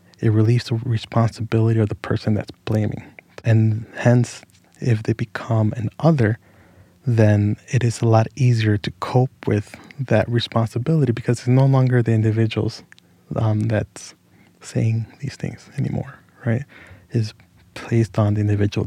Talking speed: 145 wpm